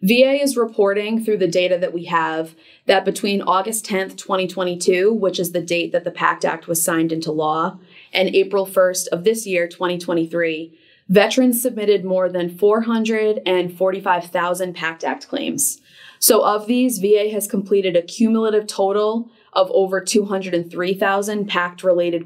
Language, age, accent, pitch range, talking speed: English, 20-39, American, 175-220 Hz, 145 wpm